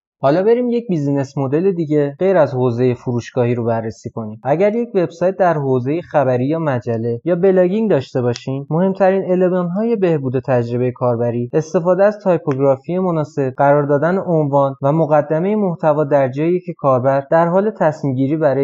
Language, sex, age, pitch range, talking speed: Persian, male, 20-39, 130-175 Hz, 155 wpm